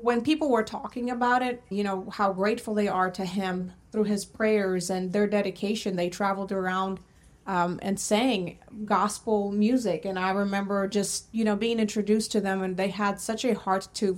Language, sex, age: English, female, 30-49